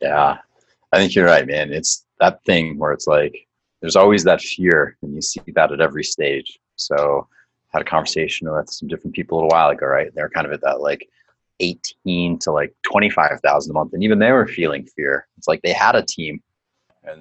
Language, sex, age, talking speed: English, male, 30-49, 215 wpm